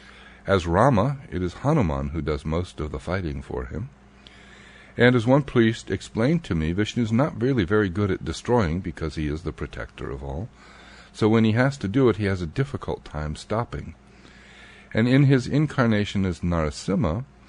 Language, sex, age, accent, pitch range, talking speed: English, male, 60-79, American, 80-110 Hz, 185 wpm